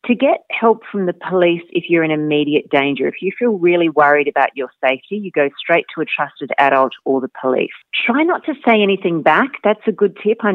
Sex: female